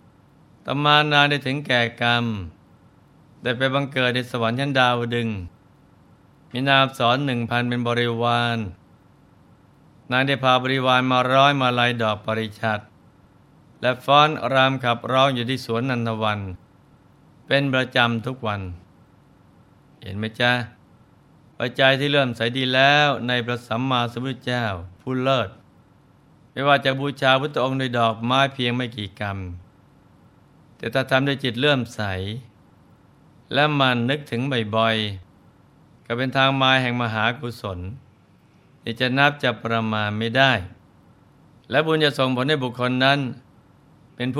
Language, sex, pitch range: Thai, male, 115-135 Hz